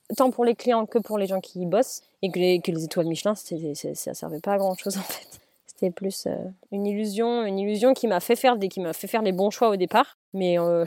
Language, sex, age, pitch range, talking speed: French, female, 20-39, 180-220 Hz, 275 wpm